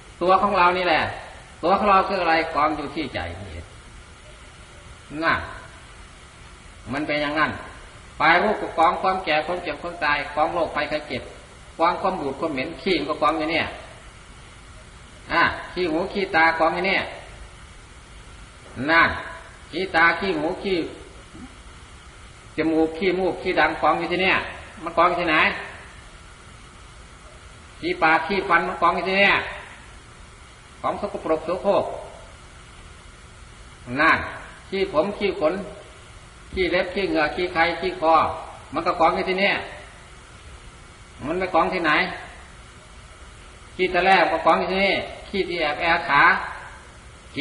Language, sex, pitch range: Thai, male, 125-185 Hz